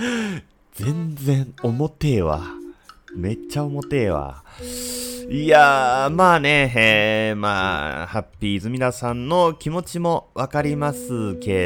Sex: male